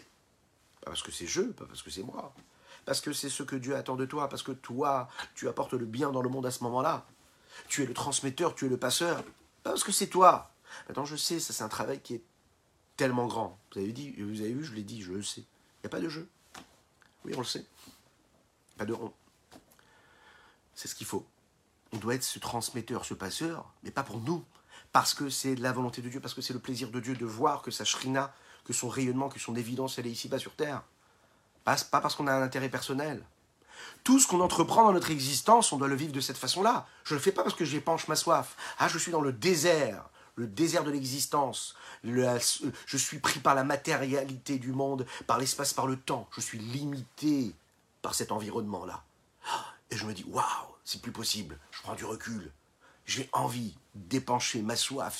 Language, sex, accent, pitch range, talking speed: French, male, French, 120-145 Hz, 225 wpm